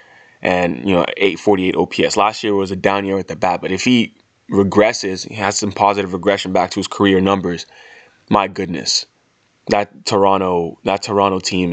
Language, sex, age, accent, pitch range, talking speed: English, male, 20-39, American, 95-115 Hz, 180 wpm